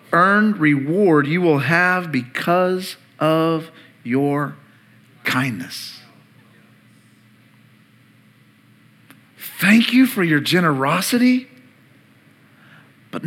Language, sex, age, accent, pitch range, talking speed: English, male, 40-59, American, 140-180 Hz, 70 wpm